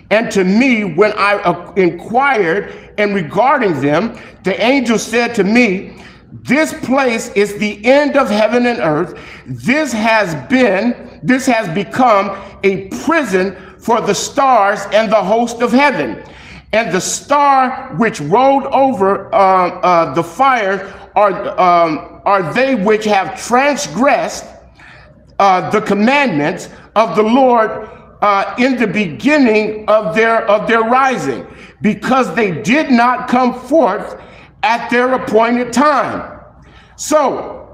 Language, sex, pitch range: English, male, 205-280 Hz